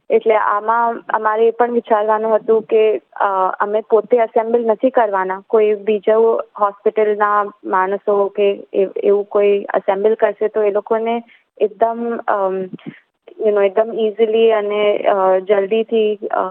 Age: 20-39